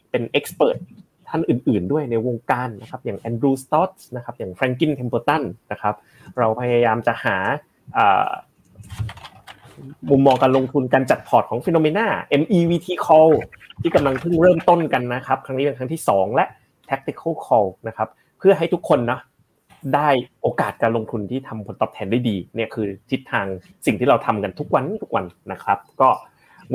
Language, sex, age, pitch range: Thai, male, 30-49, 115-155 Hz